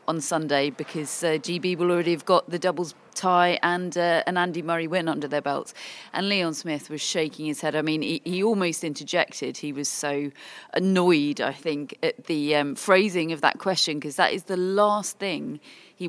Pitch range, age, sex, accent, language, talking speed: 155-195 Hz, 30-49, female, British, English, 200 wpm